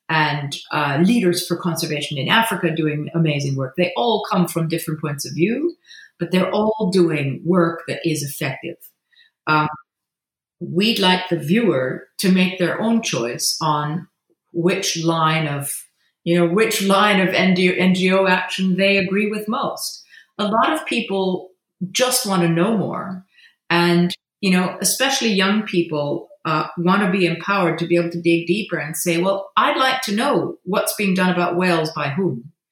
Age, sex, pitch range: 40-59, female, 170-210 Hz